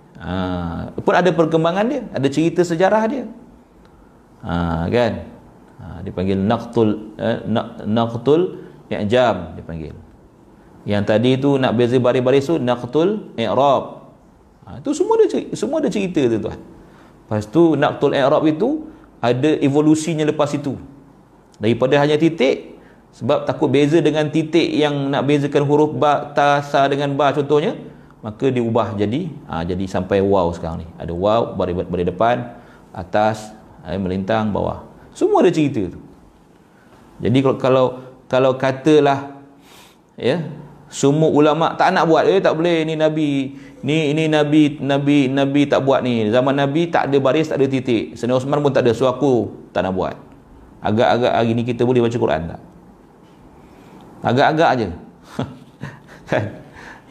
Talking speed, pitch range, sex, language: 150 wpm, 115-150 Hz, male, Malay